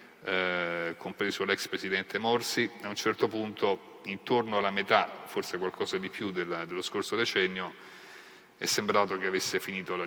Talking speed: 155 wpm